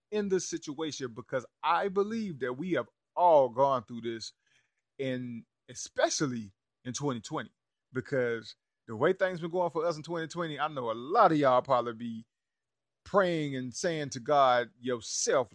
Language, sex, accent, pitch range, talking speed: English, male, American, 120-170 Hz, 160 wpm